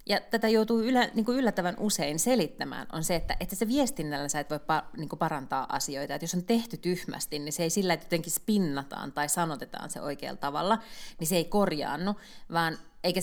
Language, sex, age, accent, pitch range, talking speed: Finnish, female, 30-49, native, 150-205 Hz, 200 wpm